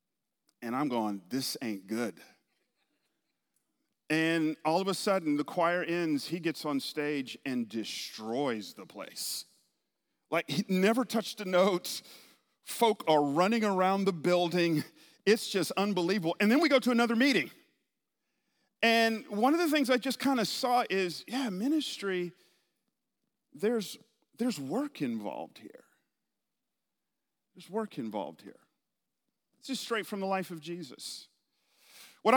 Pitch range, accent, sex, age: 160-235 Hz, American, male, 40-59